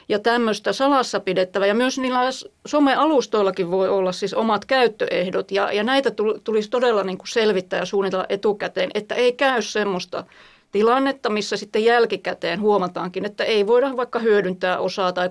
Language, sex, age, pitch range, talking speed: Finnish, female, 30-49, 185-215 Hz, 155 wpm